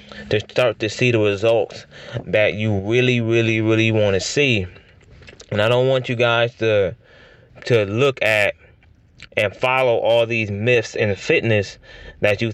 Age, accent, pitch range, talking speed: 20-39, American, 110-125 Hz, 160 wpm